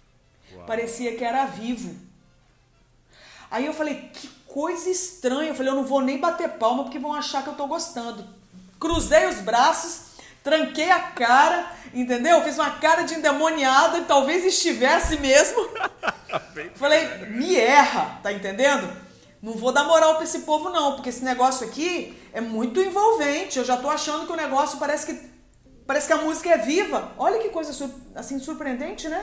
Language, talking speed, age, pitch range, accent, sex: Portuguese, 170 wpm, 40-59, 245-315 Hz, Brazilian, female